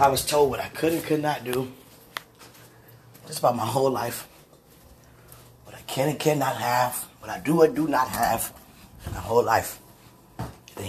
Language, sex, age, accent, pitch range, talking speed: English, male, 30-49, American, 115-125 Hz, 180 wpm